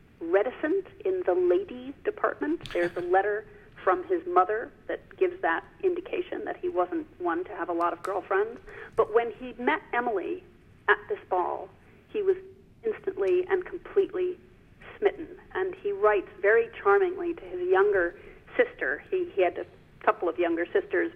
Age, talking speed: 40-59, 160 wpm